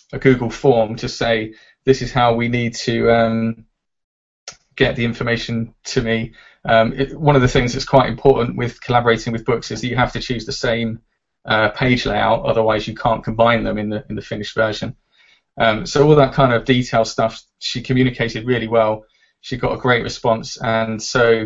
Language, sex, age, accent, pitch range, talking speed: English, male, 20-39, British, 110-130 Hz, 200 wpm